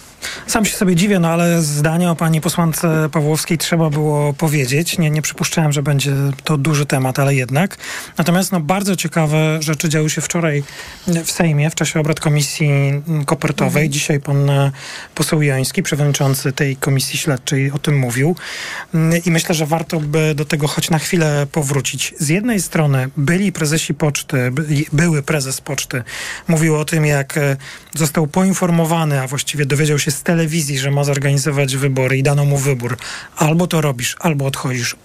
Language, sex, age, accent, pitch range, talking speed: Polish, male, 40-59, native, 145-170 Hz, 160 wpm